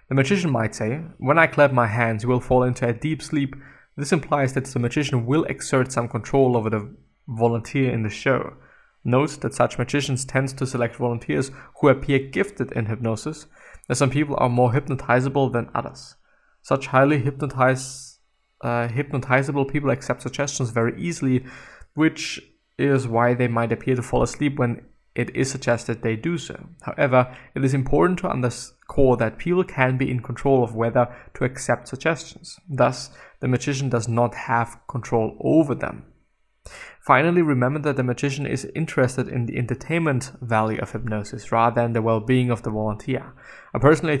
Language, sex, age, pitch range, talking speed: English, male, 20-39, 120-145 Hz, 170 wpm